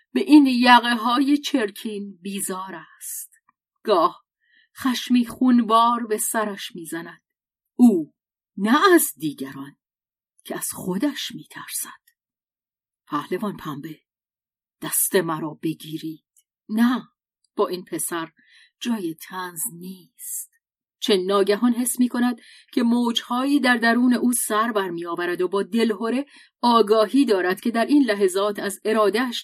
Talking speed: 115 wpm